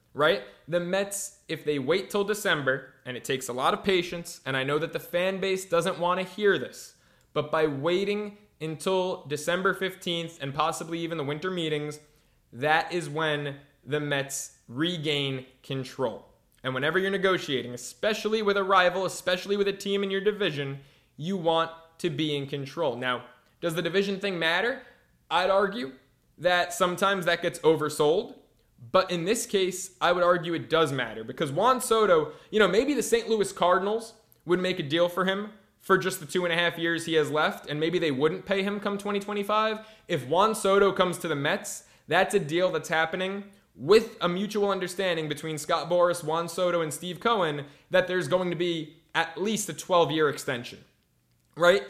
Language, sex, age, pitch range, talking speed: English, male, 20-39, 150-195 Hz, 185 wpm